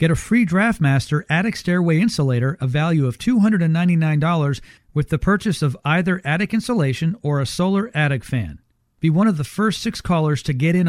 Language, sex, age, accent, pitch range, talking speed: English, male, 40-59, American, 135-180 Hz, 180 wpm